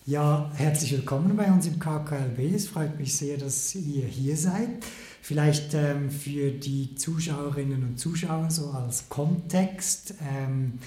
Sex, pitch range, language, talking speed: male, 140-175 Hz, German, 145 wpm